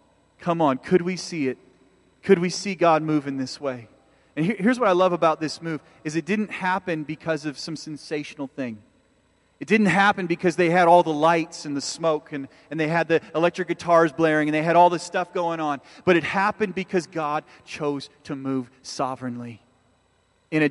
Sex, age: male, 40-59